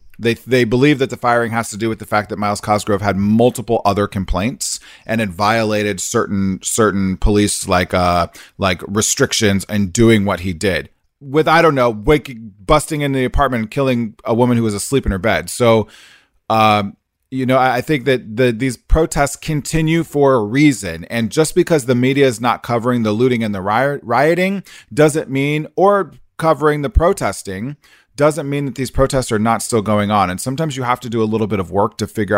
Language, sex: English, male